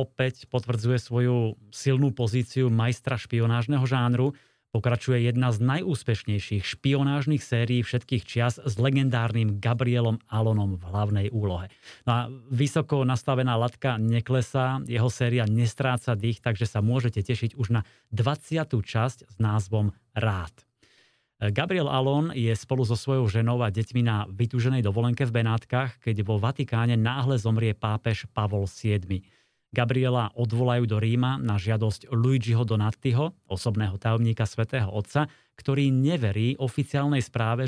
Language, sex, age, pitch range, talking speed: Slovak, male, 30-49, 110-130 Hz, 130 wpm